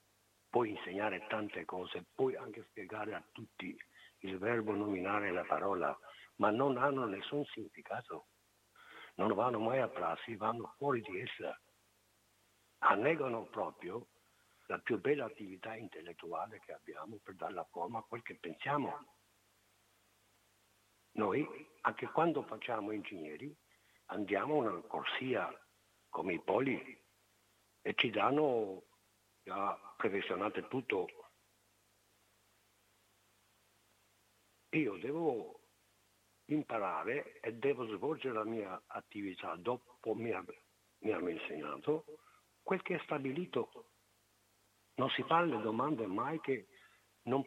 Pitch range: 100-115 Hz